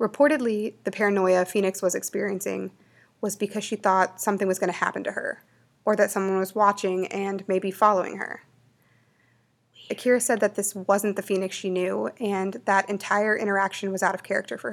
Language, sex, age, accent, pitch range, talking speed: English, female, 20-39, American, 185-205 Hz, 180 wpm